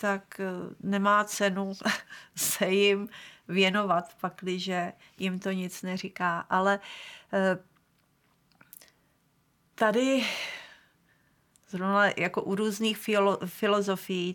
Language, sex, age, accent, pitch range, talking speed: Czech, female, 30-49, native, 180-205 Hz, 70 wpm